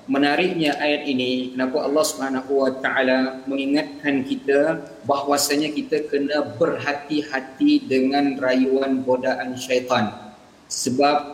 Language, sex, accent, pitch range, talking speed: Malayalam, male, Indonesian, 135-170 Hz, 100 wpm